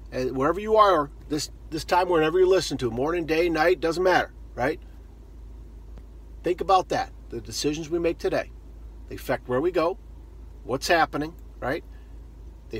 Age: 50-69